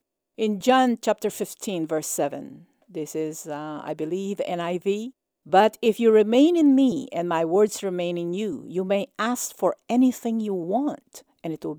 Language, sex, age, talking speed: English, female, 50-69, 175 wpm